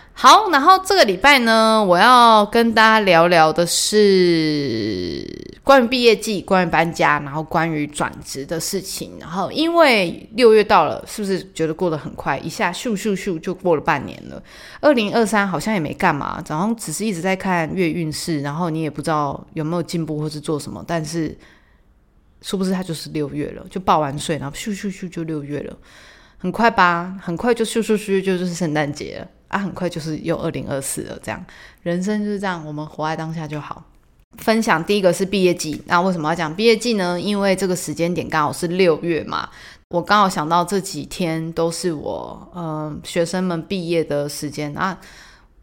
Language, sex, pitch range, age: Chinese, female, 160-200 Hz, 20-39